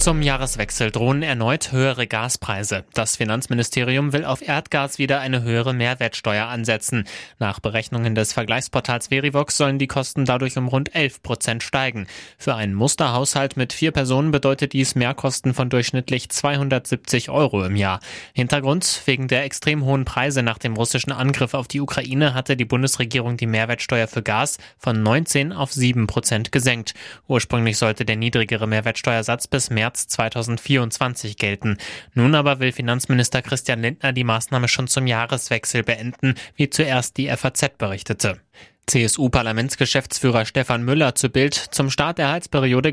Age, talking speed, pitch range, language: 20-39, 150 wpm, 115-135 Hz, German